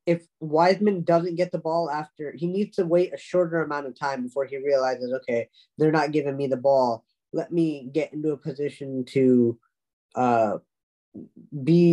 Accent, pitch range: American, 135-170 Hz